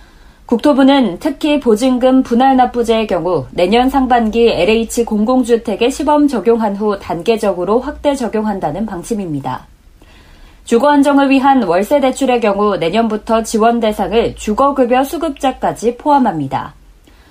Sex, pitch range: female, 205-270 Hz